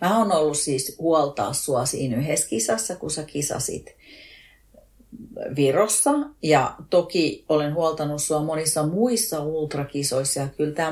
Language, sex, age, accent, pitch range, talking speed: Finnish, female, 40-59, native, 140-175 Hz, 130 wpm